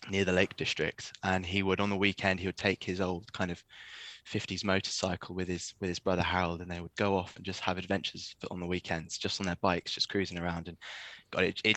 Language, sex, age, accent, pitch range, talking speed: English, male, 20-39, British, 95-105 Hz, 245 wpm